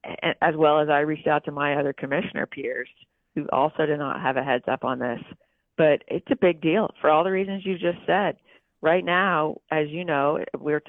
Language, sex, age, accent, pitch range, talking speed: English, female, 40-59, American, 145-170 Hz, 215 wpm